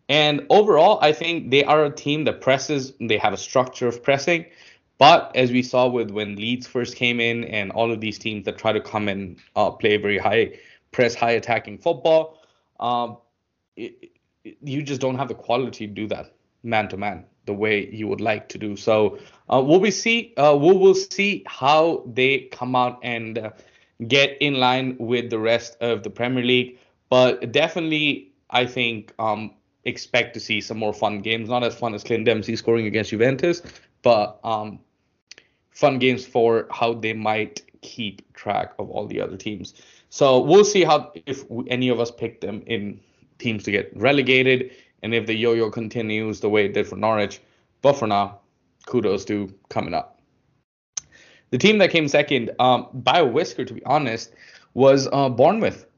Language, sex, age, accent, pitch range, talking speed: English, male, 20-39, Indian, 110-140 Hz, 180 wpm